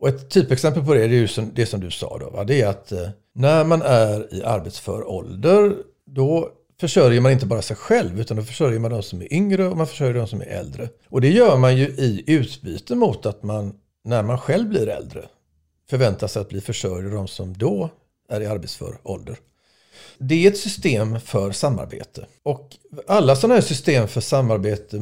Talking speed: 200 wpm